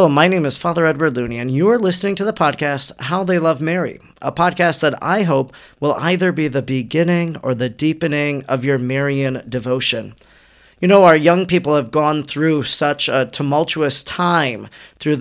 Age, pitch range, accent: 40-59, 135-165 Hz, American